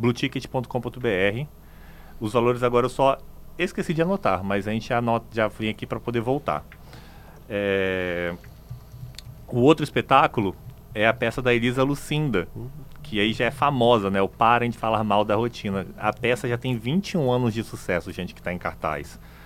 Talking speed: 170 wpm